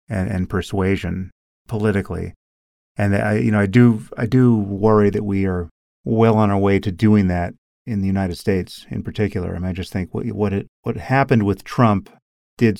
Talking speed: 200 wpm